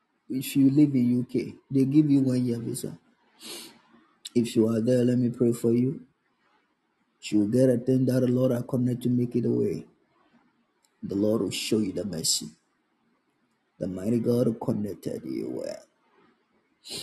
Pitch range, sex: 115-130 Hz, male